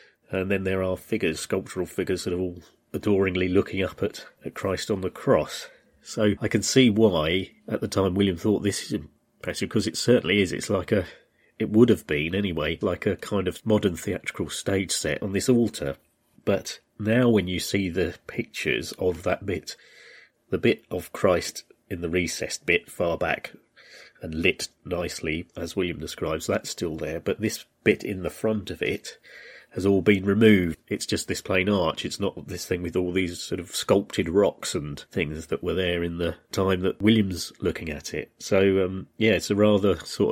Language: English